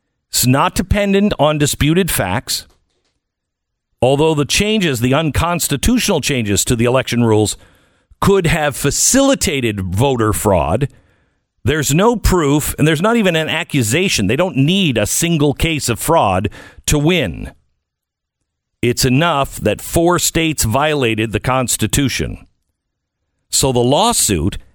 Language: English